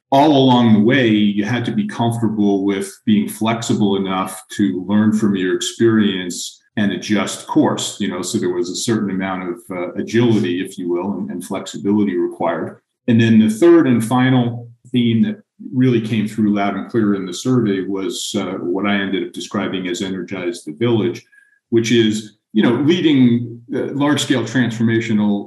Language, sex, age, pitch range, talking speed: English, male, 40-59, 95-115 Hz, 180 wpm